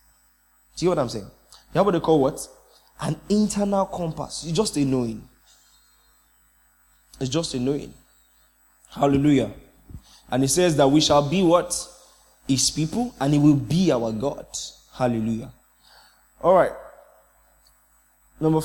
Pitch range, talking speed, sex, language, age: 110-150 Hz, 140 wpm, male, English, 20-39